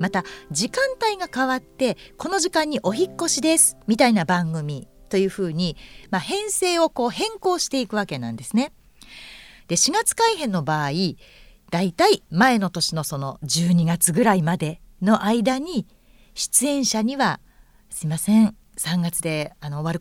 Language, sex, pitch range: Japanese, female, 165-255 Hz